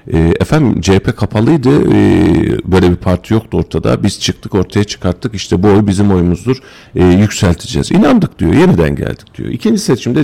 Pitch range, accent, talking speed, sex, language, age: 85-120 Hz, native, 150 wpm, male, Turkish, 40-59